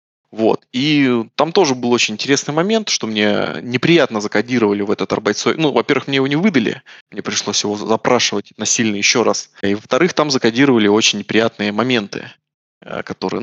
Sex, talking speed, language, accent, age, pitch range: male, 165 wpm, Russian, native, 20-39, 105-145 Hz